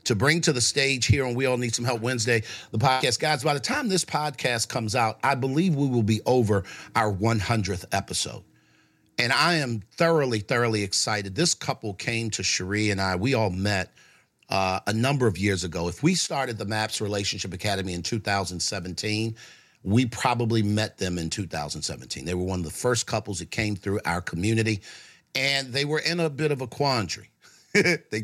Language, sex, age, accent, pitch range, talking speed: English, male, 50-69, American, 105-140 Hz, 195 wpm